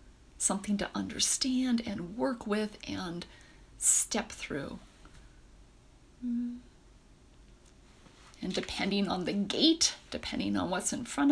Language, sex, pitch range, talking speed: English, female, 185-245 Hz, 100 wpm